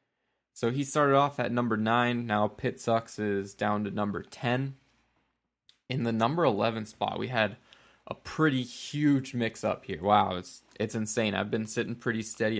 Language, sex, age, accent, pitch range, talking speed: English, male, 20-39, American, 105-120 Hz, 170 wpm